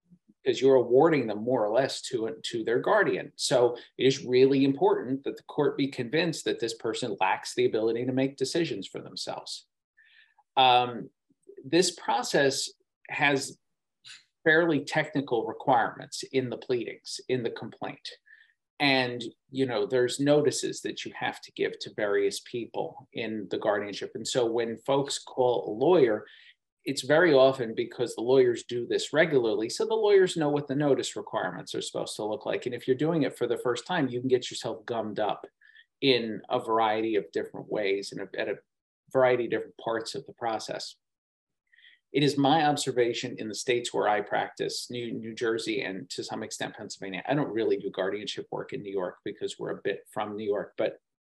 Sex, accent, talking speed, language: male, American, 180 wpm, English